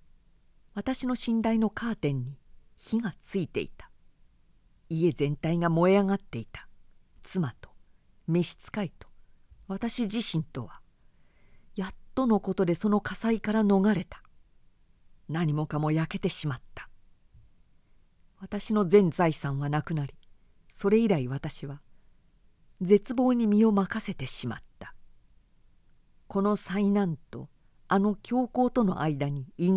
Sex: female